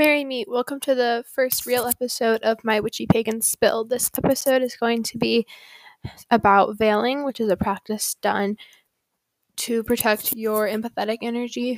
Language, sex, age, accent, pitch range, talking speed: English, female, 10-29, American, 210-240 Hz, 160 wpm